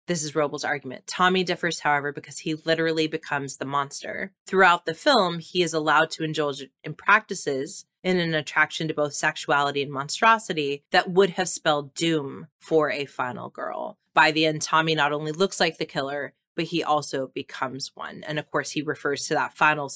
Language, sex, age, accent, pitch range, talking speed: English, female, 20-39, American, 145-170 Hz, 190 wpm